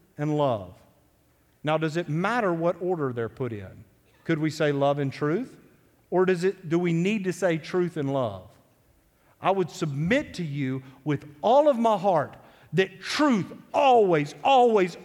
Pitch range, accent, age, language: 145-225 Hz, American, 50-69, English